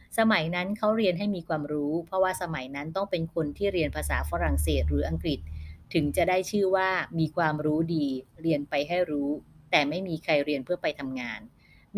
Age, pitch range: 30-49, 135-185 Hz